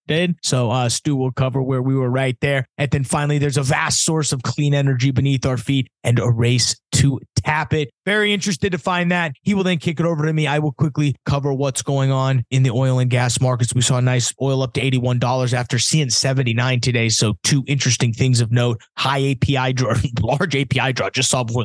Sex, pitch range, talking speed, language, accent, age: male, 120-150 Hz, 230 wpm, English, American, 30-49